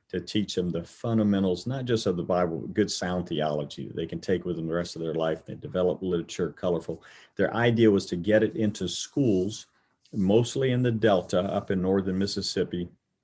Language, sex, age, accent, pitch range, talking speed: English, male, 50-69, American, 90-105 Hz, 205 wpm